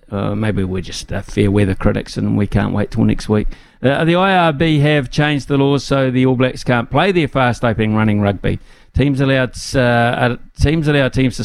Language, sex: English, male